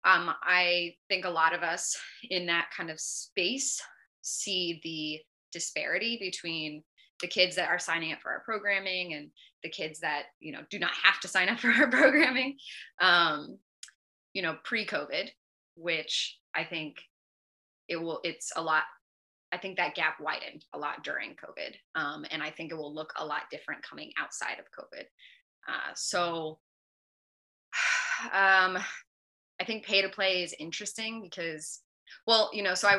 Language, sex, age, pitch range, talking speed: English, female, 20-39, 160-195 Hz, 160 wpm